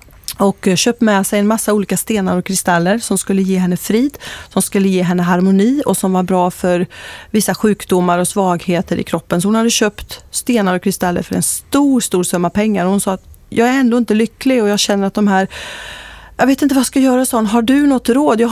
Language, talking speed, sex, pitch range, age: Swedish, 230 wpm, female, 185-215 Hz, 30-49